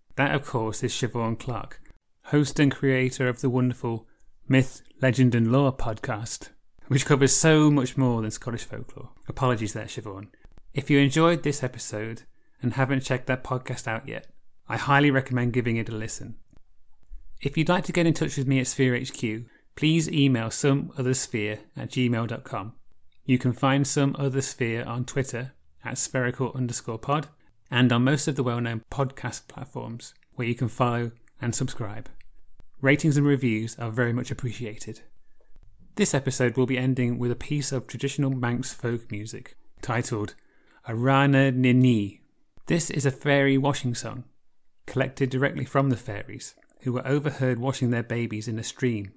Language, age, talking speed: English, 30-49, 160 wpm